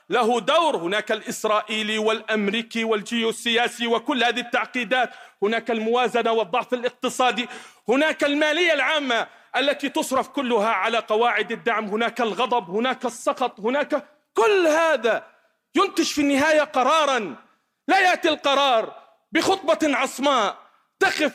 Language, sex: Arabic, male